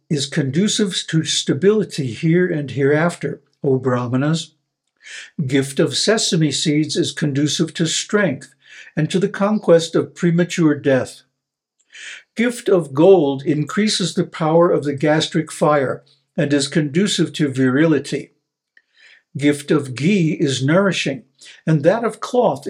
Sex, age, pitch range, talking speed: male, 60-79, 145-185 Hz, 125 wpm